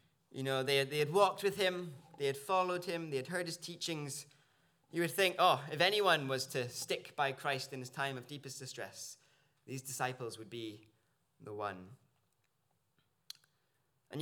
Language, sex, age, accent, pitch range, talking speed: English, male, 20-39, British, 130-170 Hz, 175 wpm